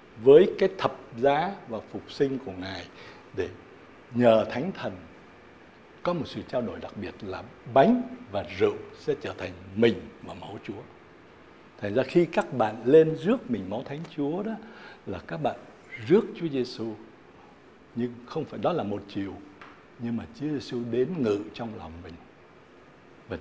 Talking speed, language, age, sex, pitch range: 170 wpm, Vietnamese, 60-79, male, 100-160 Hz